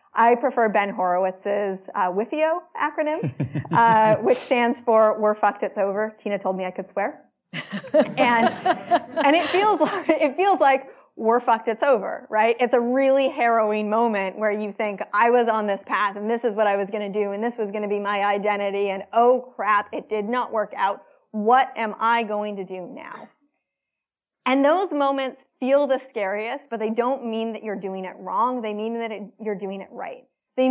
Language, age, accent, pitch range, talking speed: English, 30-49, American, 200-255 Hz, 200 wpm